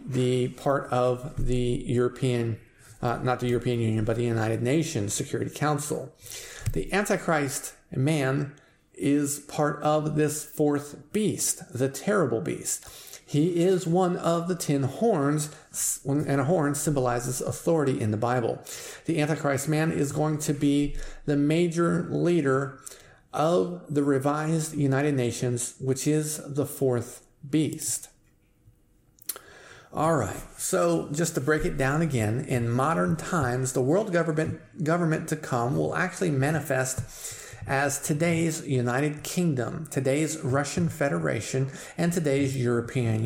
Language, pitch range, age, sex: English, 125-155 Hz, 40-59, male